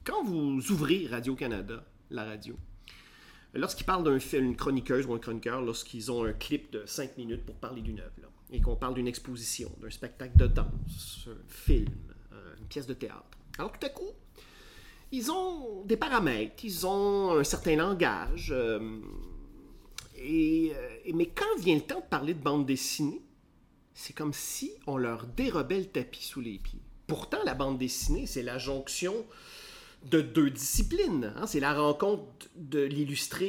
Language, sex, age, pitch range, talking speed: French, male, 40-59, 120-185 Hz, 165 wpm